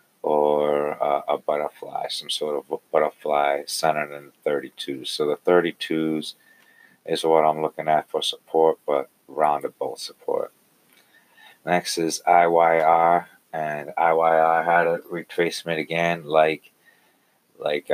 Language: English